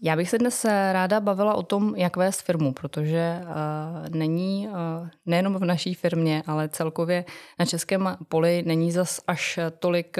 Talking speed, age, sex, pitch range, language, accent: 165 wpm, 20-39, female, 165-185 Hz, Czech, native